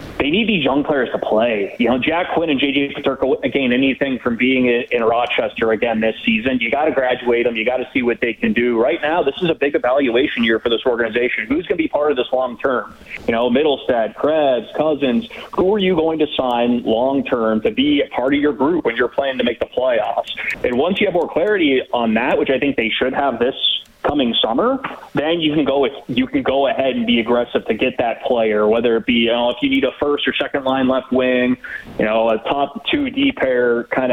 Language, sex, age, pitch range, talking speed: English, male, 30-49, 115-140 Hz, 245 wpm